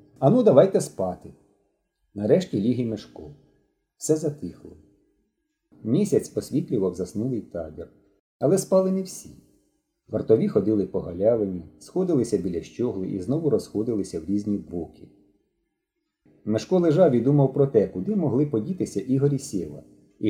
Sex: male